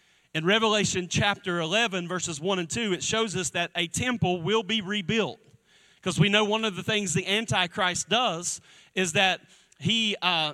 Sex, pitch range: male, 180-225 Hz